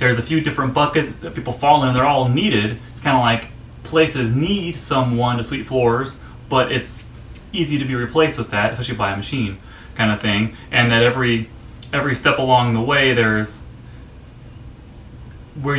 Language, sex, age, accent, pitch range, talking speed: English, male, 30-49, American, 115-130 Hz, 185 wpm